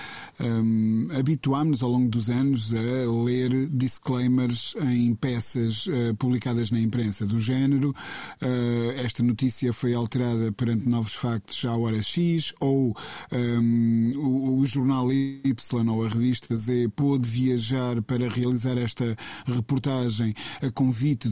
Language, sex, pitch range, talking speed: Portuguese, male, 115-135 Hz, 120 wpm